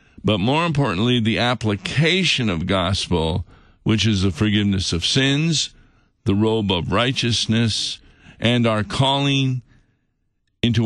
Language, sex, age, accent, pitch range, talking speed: English, male, 50-69, American, 100-125 Hz, 115 wpm